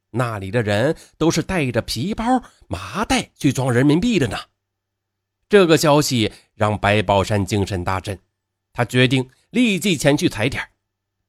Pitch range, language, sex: 100-165 Hz, Chinese, male